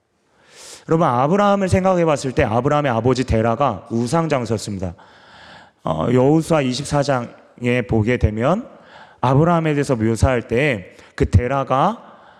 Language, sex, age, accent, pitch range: Korean, male, 30-49, native, 115-150 Hz